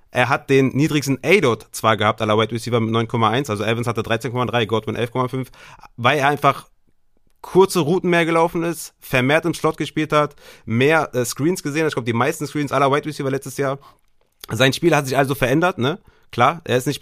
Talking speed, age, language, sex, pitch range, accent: 200 wpm, 30-49, German, male, 125-155 Hz, German